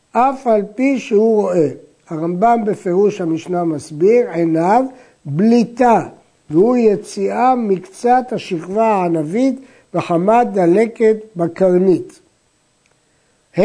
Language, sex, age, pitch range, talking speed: Hebrew, male, 60-79, 175-235 Hz, 90 wpm